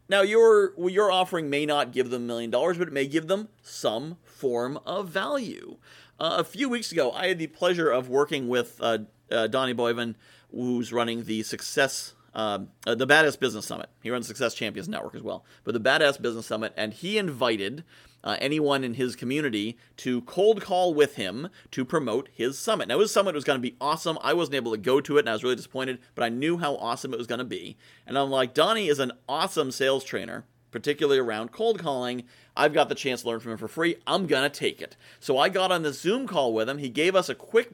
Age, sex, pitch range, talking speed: 40-59, male, 125-195 Hz, 235 wpm